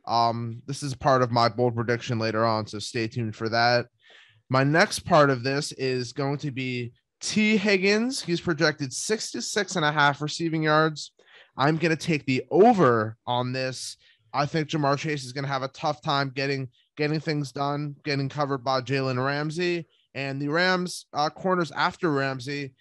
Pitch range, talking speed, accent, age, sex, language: 140-175 Hz, 185 wpm, American, 20-39, male, English